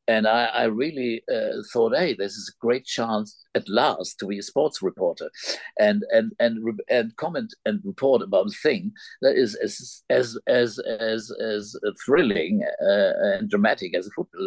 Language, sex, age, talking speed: English, male, 50-69, 185 wpm